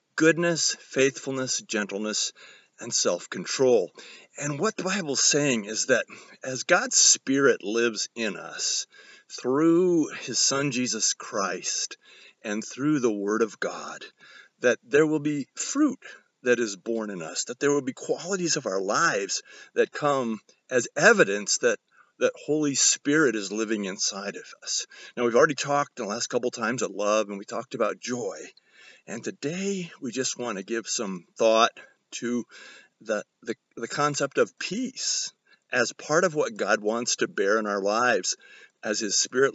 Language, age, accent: English, 40-59, American